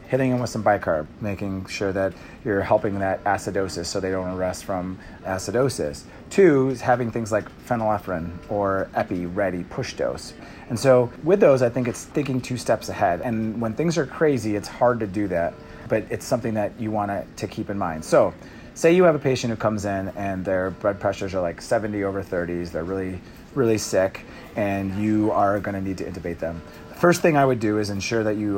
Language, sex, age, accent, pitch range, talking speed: English, male, 30-49, American, 95-115 Hz, 210 wpm